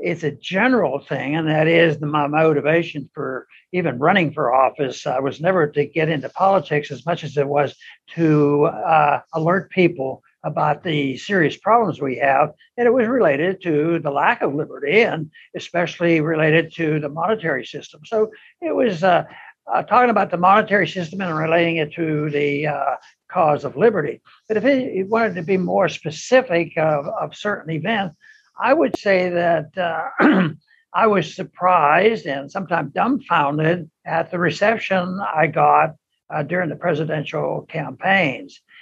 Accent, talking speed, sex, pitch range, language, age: American, 160 wpm, male, 155-200 Hz, English, 60-79